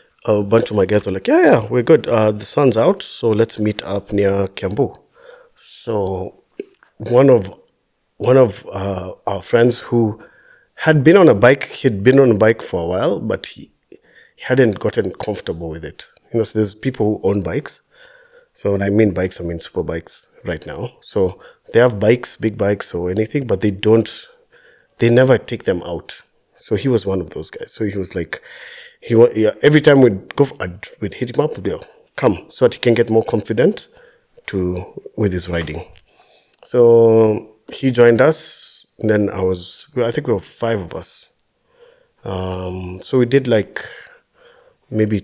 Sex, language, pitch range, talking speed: male, English, 95-130 Hz, 185 wpm